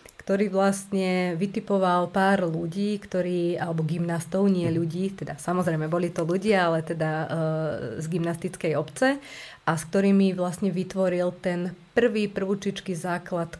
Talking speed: 130 wpm